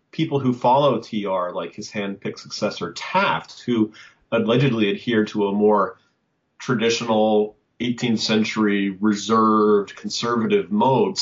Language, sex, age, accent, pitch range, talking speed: English, male, 30-49, American, 100-125 Hz, 120 wpm